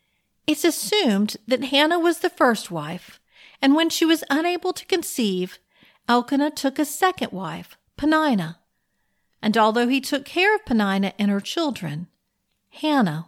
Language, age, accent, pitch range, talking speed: English, 50-69, American, 210-335 Hz, 145 wpm